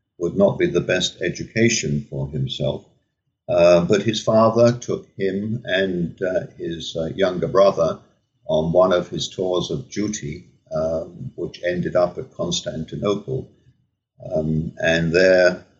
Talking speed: 135 wpm